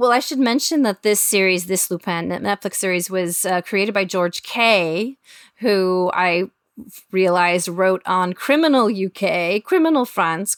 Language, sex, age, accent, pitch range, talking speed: English, female, 30-49, American, 180-235 Hz, 155 wpm